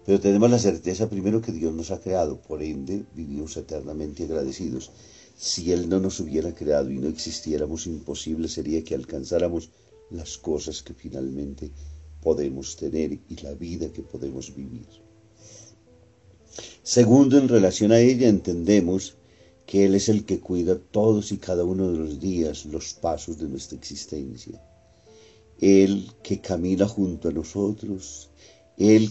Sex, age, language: male, 50-69, Spanish